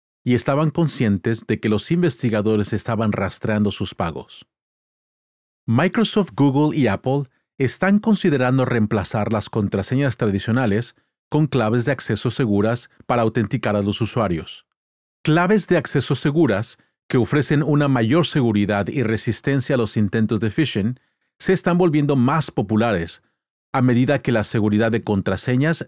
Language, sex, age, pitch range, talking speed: Spanish, male, 40-59, 110-145 Hz, 135 wpm